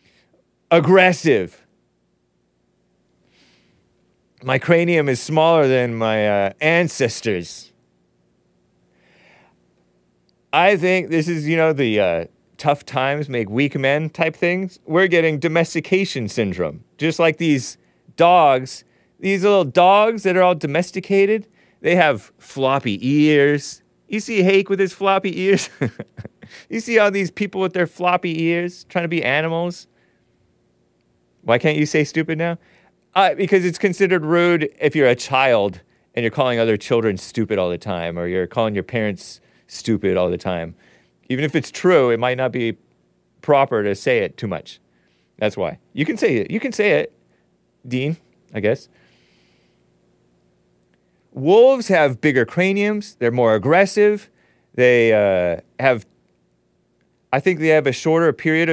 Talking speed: 145 wpm